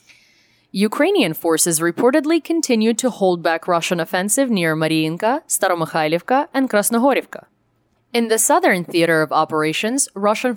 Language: English